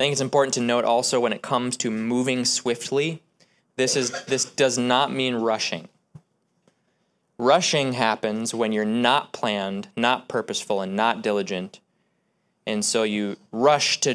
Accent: American